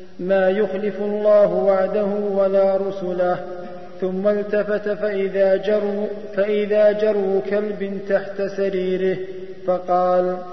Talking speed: 90 wpm